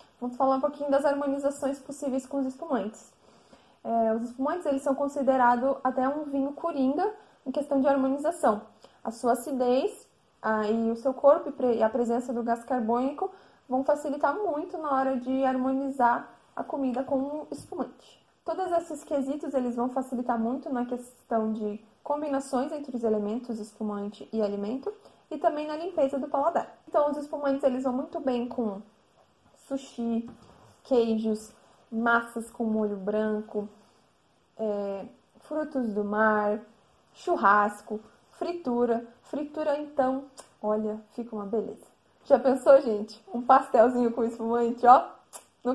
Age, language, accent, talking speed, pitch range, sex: 20-39, Portuguese, Brazilian, 130 wpm, 230-285 Hz, female